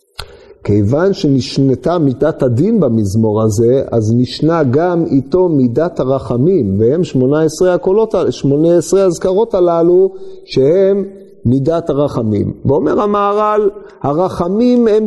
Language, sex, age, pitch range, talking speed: Hebrew, male, 50-69, 130-195 Hz, 110 wpm